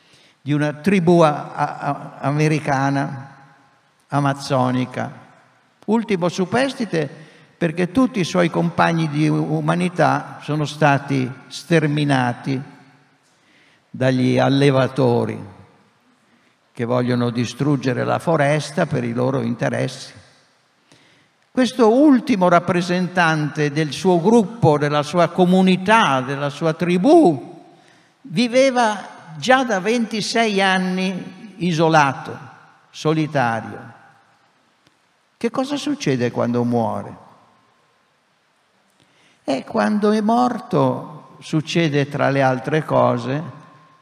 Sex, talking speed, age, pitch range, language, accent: male, 85 wpm, 60-79, 135-175 Hz, Italian, native